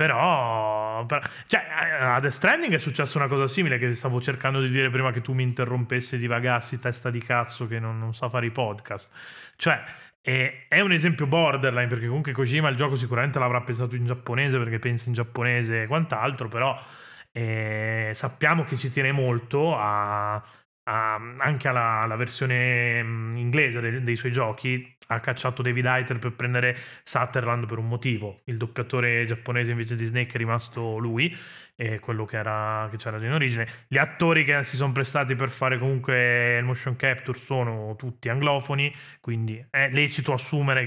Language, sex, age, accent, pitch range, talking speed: Italian, male, 30-49, native, 120-135 Hz, 180 wpm